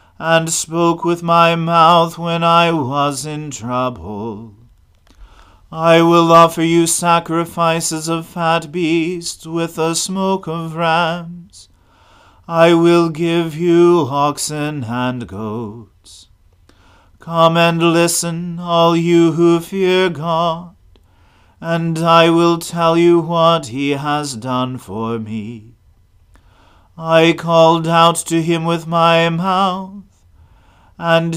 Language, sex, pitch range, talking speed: English, male, 115-170 Hz, 110 wpm